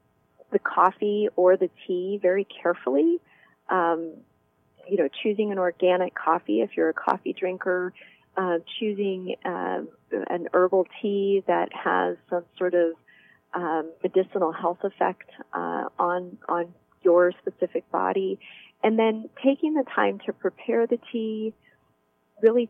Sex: female